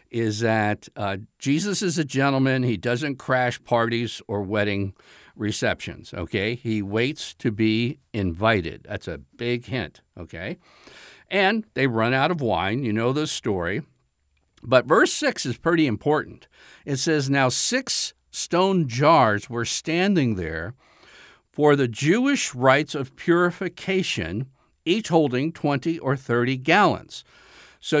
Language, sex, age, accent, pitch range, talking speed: English, male, 60-79, American, 115-160 Hz, 135 wpm